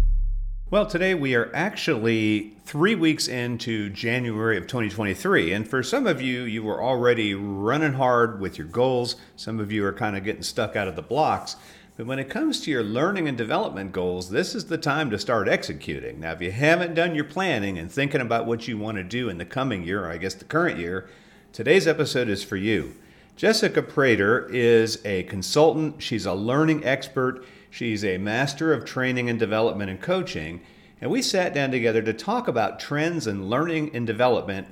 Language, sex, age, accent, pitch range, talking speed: English, male, 50-69, American, 100-140 Hz, 195 wpm